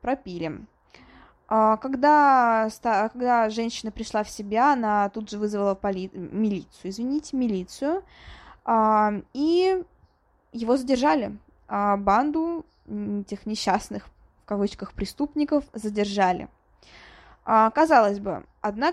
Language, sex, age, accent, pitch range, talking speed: Russian, female, 20-39, native, 200-260 Hz, 85 wpm